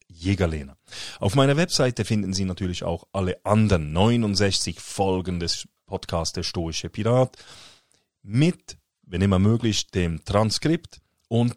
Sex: male